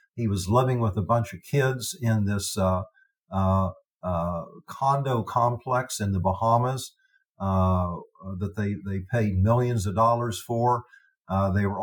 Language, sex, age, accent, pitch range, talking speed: English, male, 50-69, American, 105-135 Hz, 150 wpm